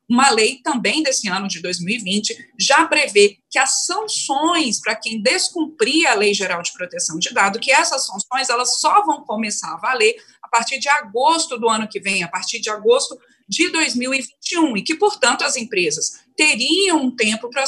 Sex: female